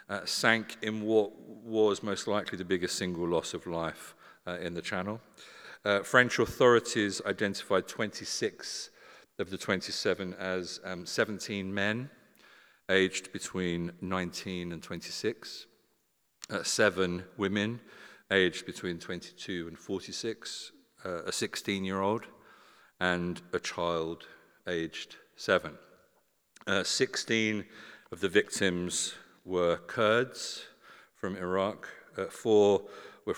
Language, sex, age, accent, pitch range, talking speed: English, male, 50-69, British, 85-105 Hz, 110 wpm